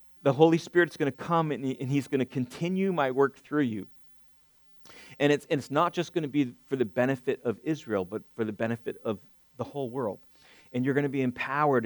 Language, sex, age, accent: English, male, 40-59, American